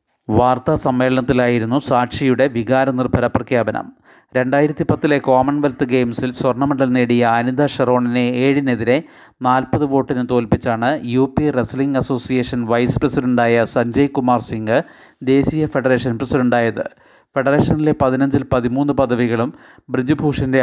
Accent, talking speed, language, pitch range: native, 95 wpm, Malayalam, 125-135 Hz